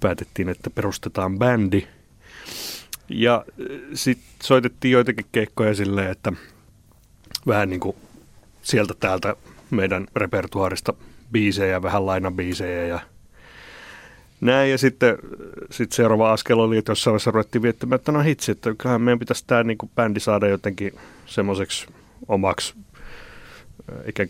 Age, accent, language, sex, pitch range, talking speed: 30-49, native, Finnish, male, 95-120 Hz, 120 wpm